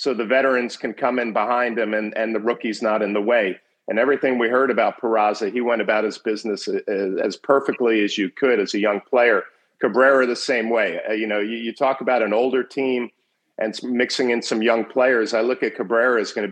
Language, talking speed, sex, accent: English, 230 wpm, male, American